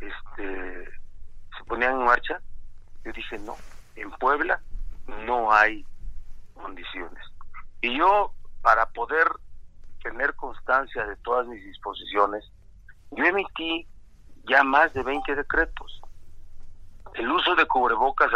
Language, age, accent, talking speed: Spanish, 50-69, Mexican, 110 wpm